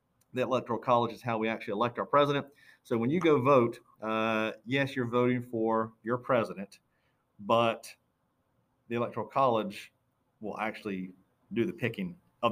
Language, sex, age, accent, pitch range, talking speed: English, male, 40-59, American, 105-125 Hz, 155 wpm